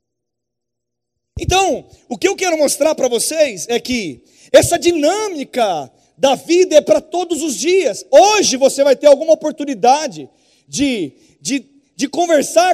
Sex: male